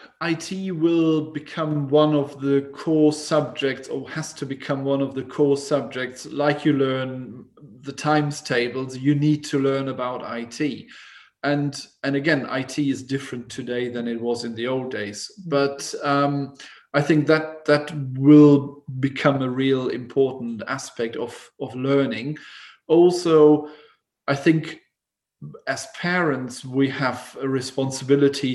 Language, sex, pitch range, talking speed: English, male, 130-150 Hz, 140 wpm